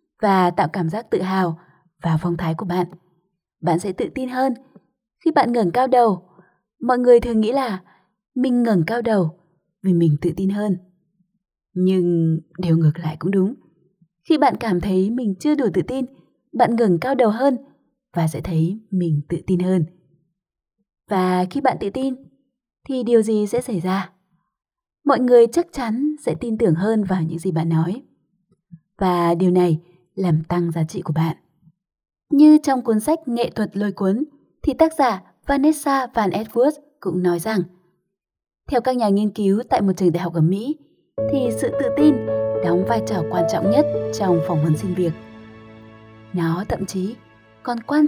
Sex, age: female, 20-39